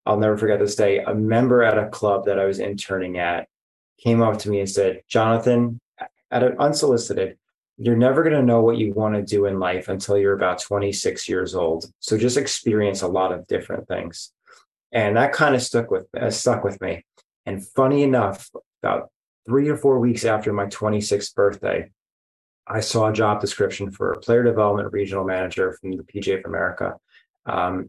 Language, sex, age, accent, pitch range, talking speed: English, male, 20-39, American, 95-110 Hz, 195 wpm